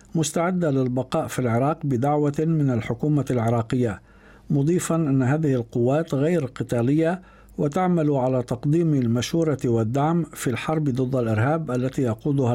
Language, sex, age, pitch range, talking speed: Arabic, male, 60-79, 120-155 Hz, 120 wpm